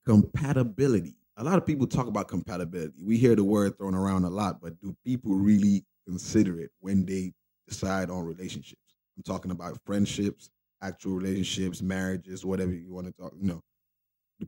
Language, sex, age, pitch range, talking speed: English, male, 20-39, 90-110 Hz, 175 wpm